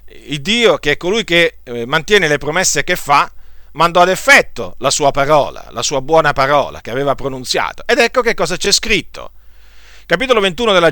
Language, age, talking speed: Italian, 40-59, 180 wpm